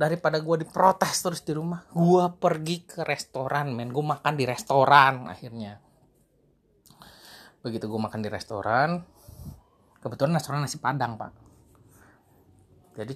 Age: 30-49